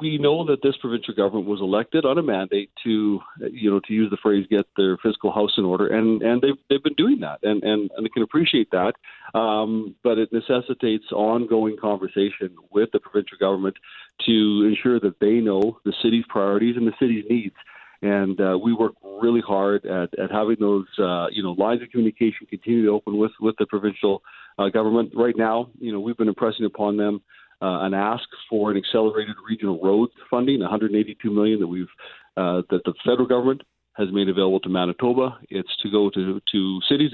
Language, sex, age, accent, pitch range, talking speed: English, male, 40-59, American, 100-115 Hz, 200 wpm